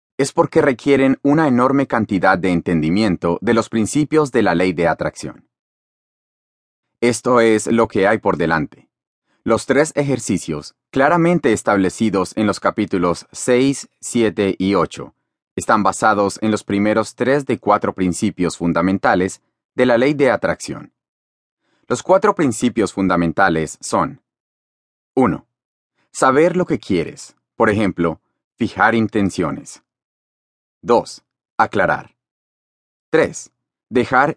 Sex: male